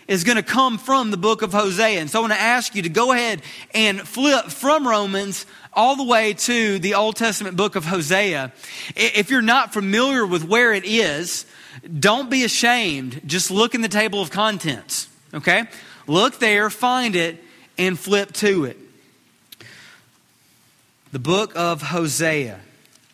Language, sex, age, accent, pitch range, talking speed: English, male, 30-49, American, 165-225 Hz, 165 wpm